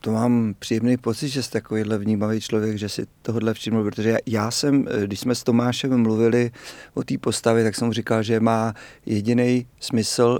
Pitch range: 105-125 Hz